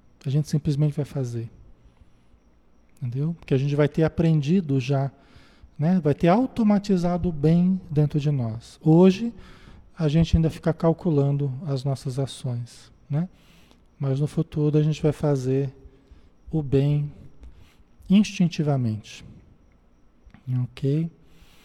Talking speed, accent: 120 wpm, Brazilian